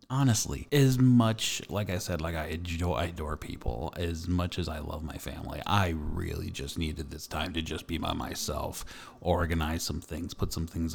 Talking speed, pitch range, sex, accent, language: 190 wpm, 85-115 Hz, male, American, English